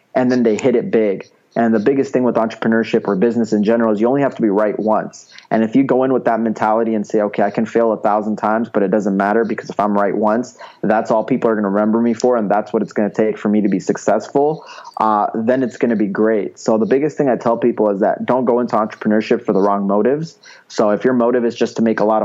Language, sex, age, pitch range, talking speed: English, male, 20-39, 105-120 Hz, 285 wpm